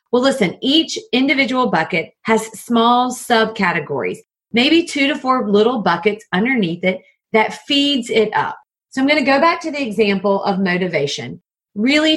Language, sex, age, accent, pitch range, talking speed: English, female, 40-59, American, 195-255 Hz, 160 wpm